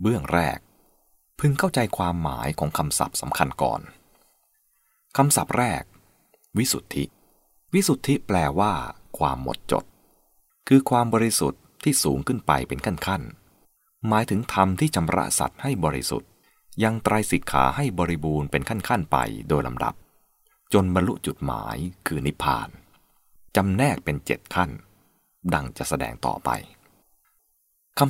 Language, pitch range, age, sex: English, 80-120 Hz, 20-39, male